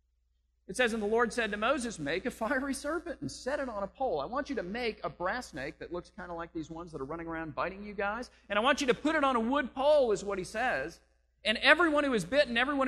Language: English